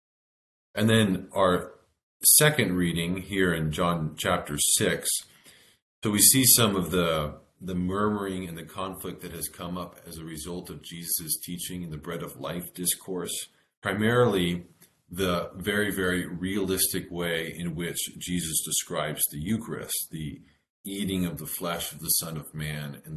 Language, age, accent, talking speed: English, 40-59, American, 155 wpm